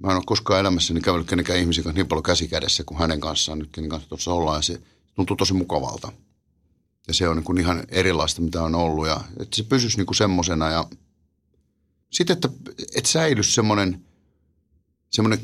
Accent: native